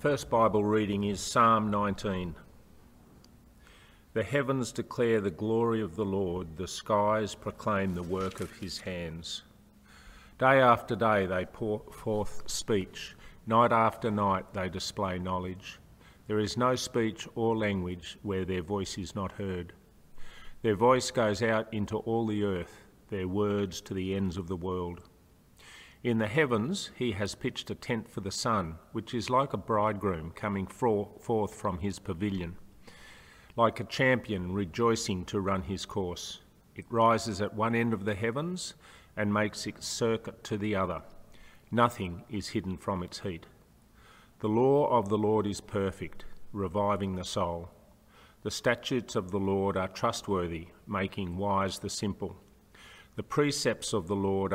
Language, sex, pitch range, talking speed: English, male, 95-110 Hz, 155 wpm